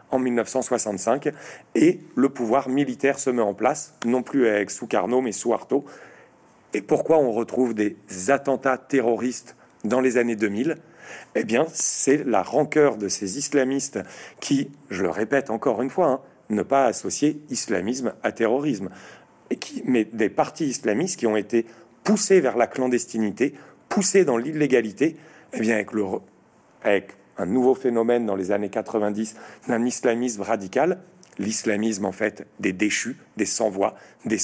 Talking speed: 150 wpm